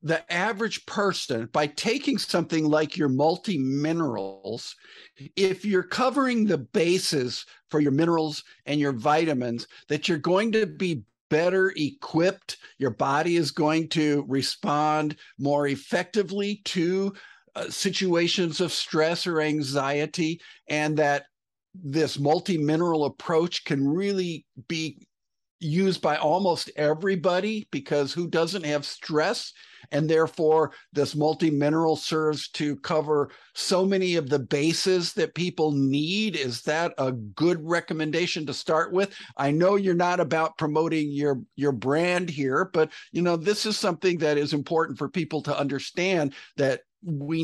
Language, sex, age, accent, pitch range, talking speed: English, male, 50-69, American, 145-180 Hz, 135 wpm